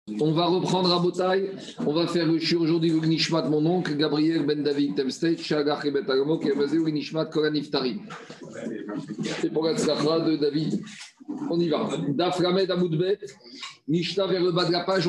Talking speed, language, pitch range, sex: 180 wpm, French, 160-190 Hz, male